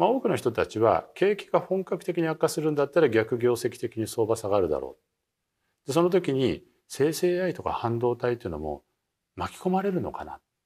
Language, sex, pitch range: Japanese, male, 125-200 Hz